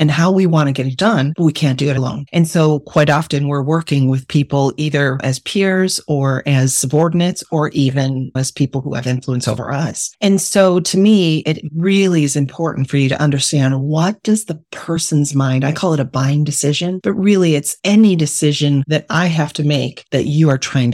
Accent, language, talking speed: American, English, 210 wpm